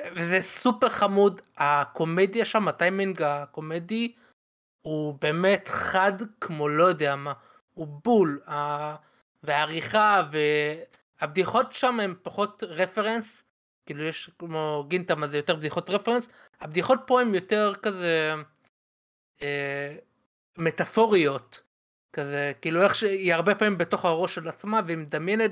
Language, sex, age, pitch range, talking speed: Hebrew, male, 30-49, 150-200 Hz, 115 wpm